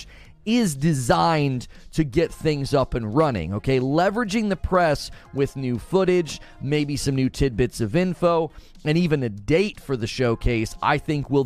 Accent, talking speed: American, 160 wpm